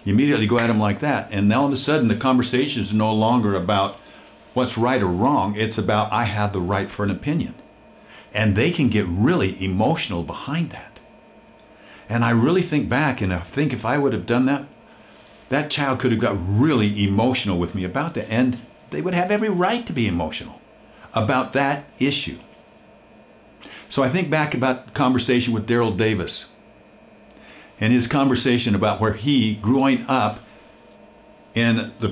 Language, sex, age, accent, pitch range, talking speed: English, male, 50-69, American, 105-145 Hz, 180 wpm